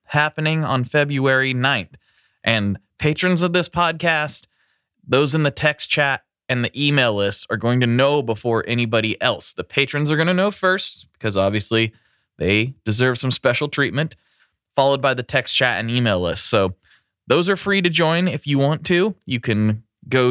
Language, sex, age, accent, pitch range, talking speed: English, male, 20-39, American, 105-140 Hz, 175 wpm